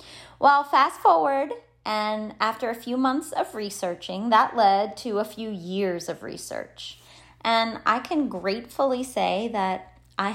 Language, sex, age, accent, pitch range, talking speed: English, female, 30-49, American, 185-245 Hz, 145 wpm